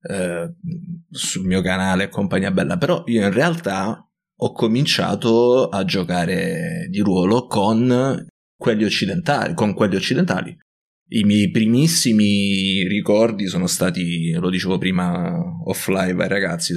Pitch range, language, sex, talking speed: 95-115 Hz, Italian, male, 120 wpm